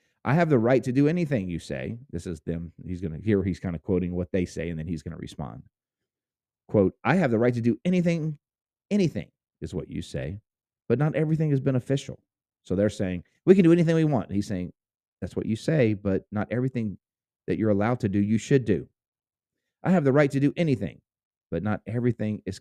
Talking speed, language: 220 wpm, English